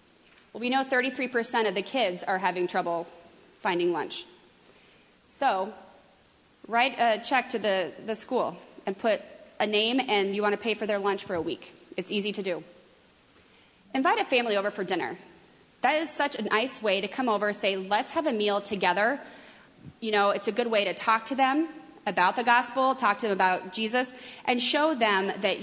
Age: 30-49